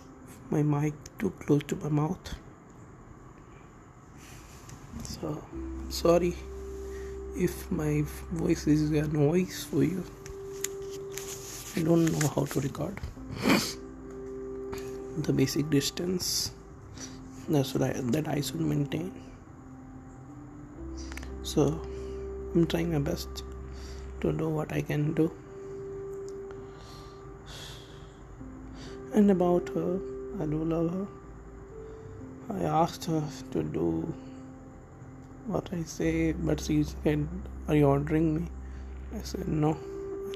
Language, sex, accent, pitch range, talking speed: English, male, Indian, 130-160 Hz, 105 wpm